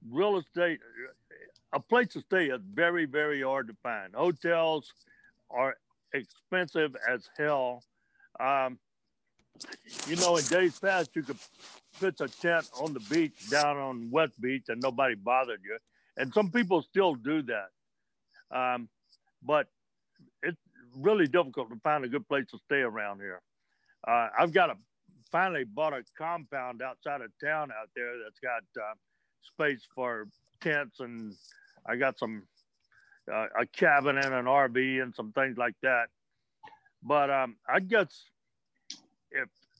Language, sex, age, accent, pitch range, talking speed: English, male, 60-79, American, 130-170 Hz, 150 wpm